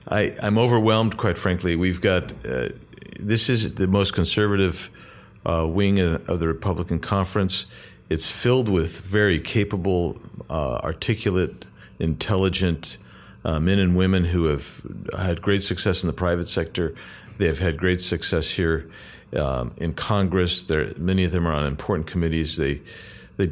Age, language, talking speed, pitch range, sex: 40-59, English, 150 wpm, 85-100 Hz, male